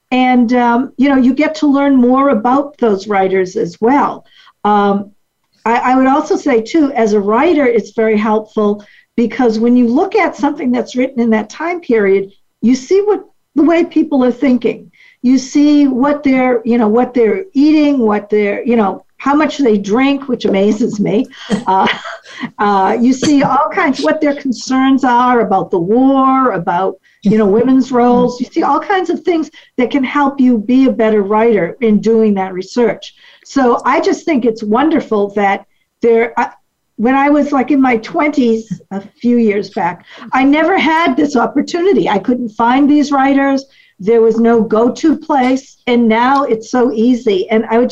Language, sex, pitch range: English, female, 220-280 Hz